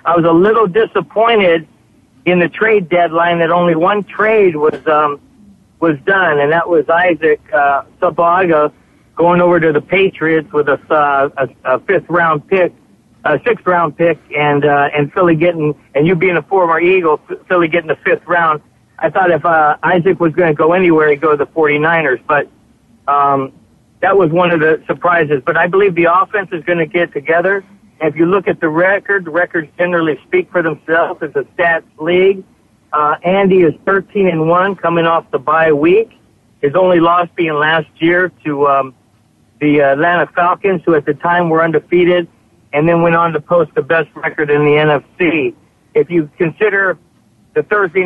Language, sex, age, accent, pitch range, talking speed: English, male, 60-79, American, 155-185 Hz, 185 wpm